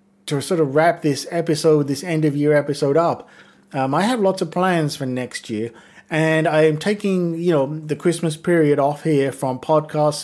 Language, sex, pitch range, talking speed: English, male, 135-170 Hz, 200 wpm